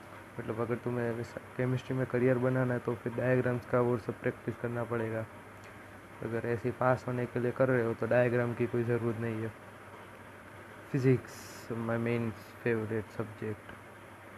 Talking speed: 165 wpm